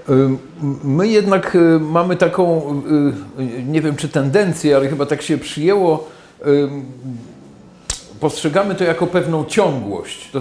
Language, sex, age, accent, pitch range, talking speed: Polish, male, 50-69, native, 125-155 Hz, 110 wpm